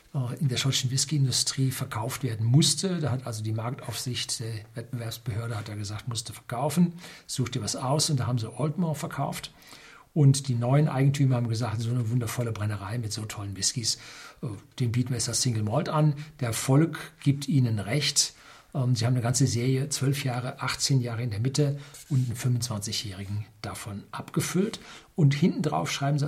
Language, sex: German, male